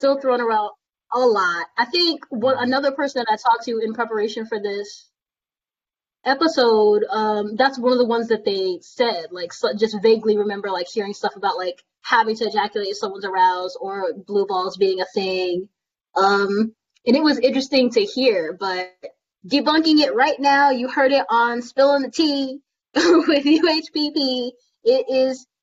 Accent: American